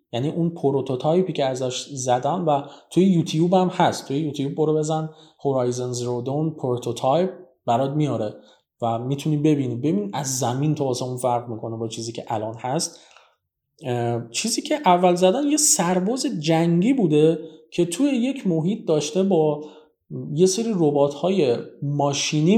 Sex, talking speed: male, 150 wpm